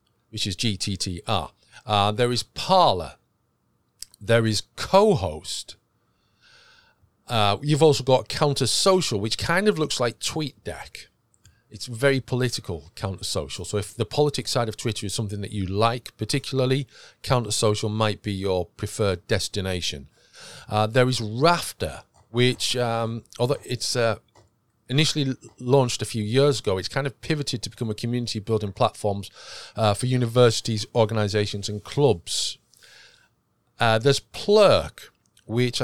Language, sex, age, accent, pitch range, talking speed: English, male, 40-59, British, 105-140 Hz, 140 wpm